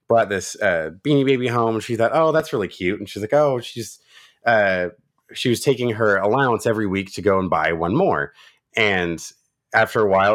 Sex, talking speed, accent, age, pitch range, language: male, 210 wpm, American, 30-49, 100-130 Hz, English